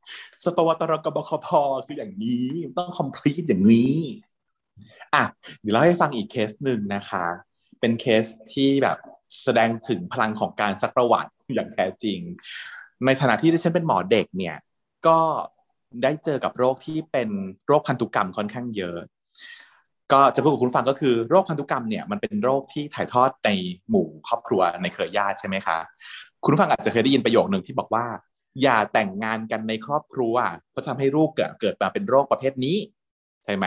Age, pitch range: 30-49, 110-170 Hz